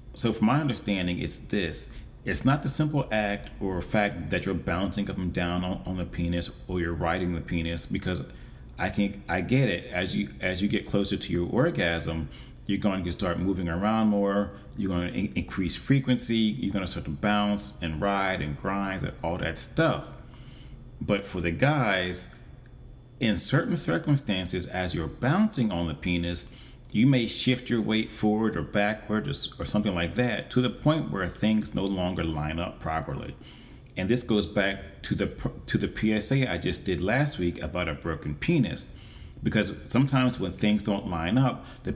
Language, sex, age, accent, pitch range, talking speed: English, male, 30-49, American, 85-110 Hz, 185 wpm